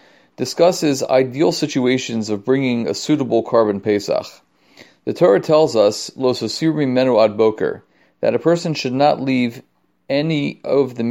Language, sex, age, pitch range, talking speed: English, male, 40-59, 115-150 Hz, 120 wpm